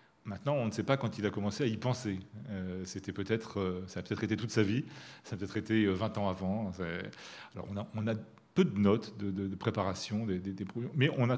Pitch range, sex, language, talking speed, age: 100-120 Hz, male, French, 255 wpm, 40-59